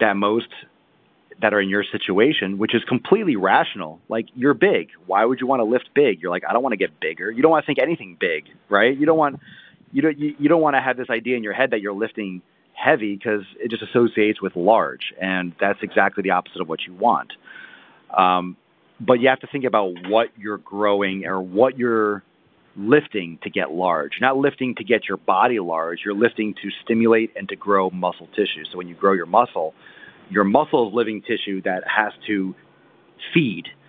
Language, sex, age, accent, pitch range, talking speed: English, male, 30-49, American, 100-125 Hz, 215 wpm